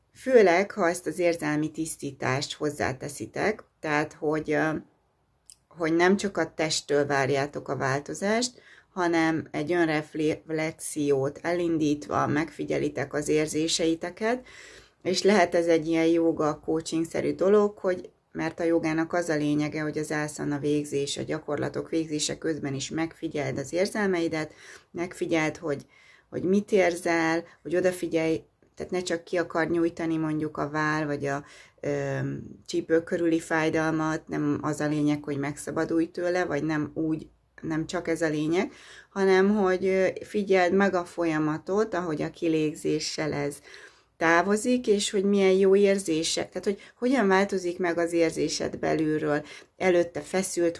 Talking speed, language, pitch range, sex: 135 wpm, Hungarian, 155-180 Hz, female